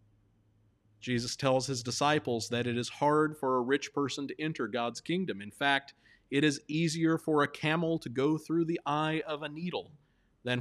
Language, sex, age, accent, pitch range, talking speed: English, male, 50-69, American, 120-165 Hz, 185 wpm